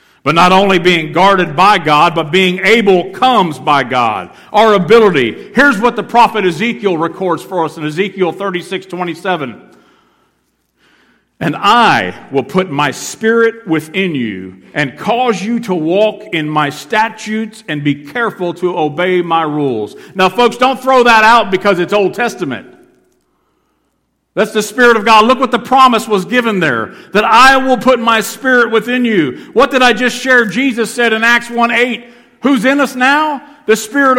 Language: English